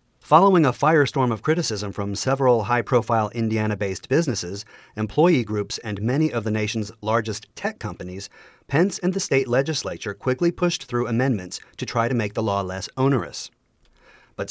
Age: 40-59